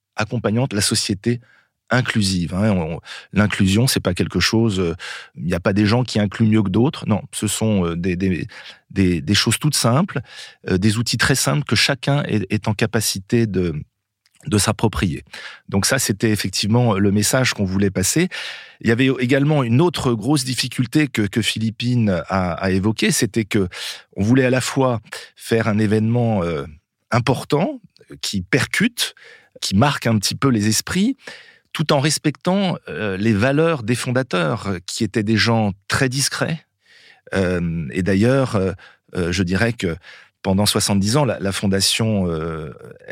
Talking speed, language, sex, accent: 165 wpm, French, male, French